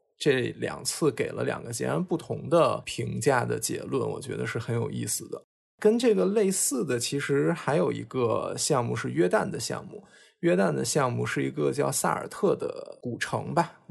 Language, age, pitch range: Chinese, 20-39, 135-185 Hz